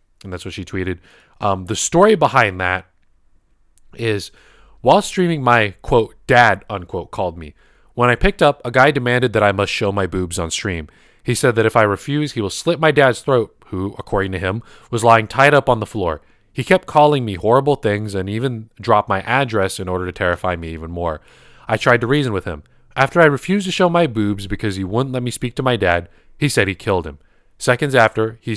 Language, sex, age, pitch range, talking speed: English, male, 20-39, 95-125 Hz, 220 wpm